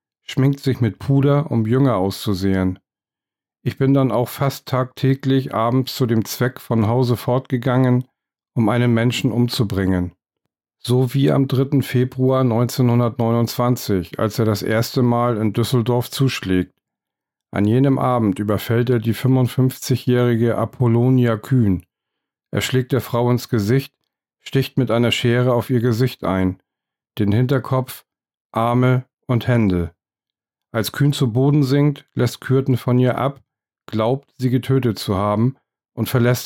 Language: German